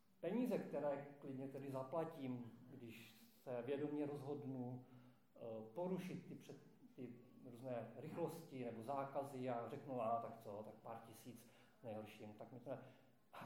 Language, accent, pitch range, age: Czech, native, 125-175 Hz, 40-59